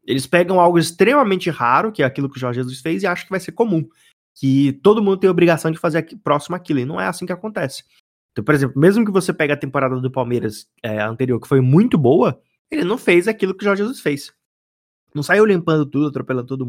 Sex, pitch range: male, 130-180 Hz